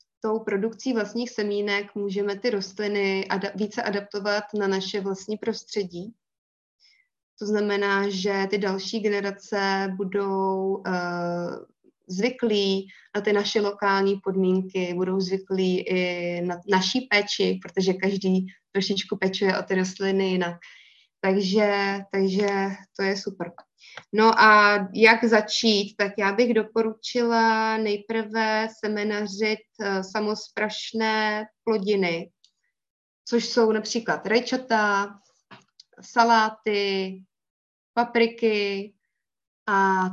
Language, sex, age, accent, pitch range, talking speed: Czech, female, 20-39, native, 195-215 Hz, 100 wpm